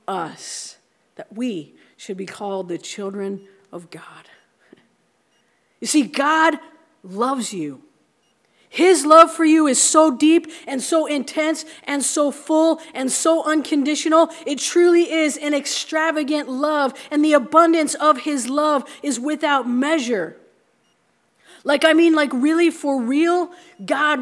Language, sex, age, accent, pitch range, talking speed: English, female, 40-59, American, 250-320 Hz, 135 wpm